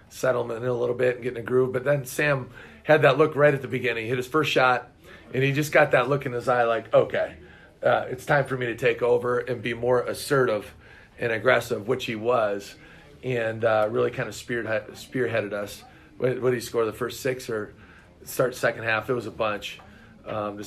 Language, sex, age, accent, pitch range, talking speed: English, male, 40-59, American, 125-150 Hz, 225 wpm